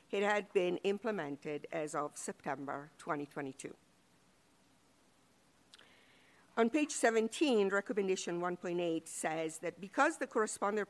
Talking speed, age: 100 wpm, 50-69